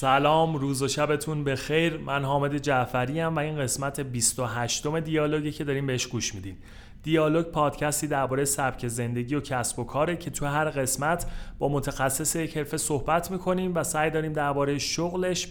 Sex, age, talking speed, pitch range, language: male, 30-49, 165 wpm, 130-160 Hz, Persian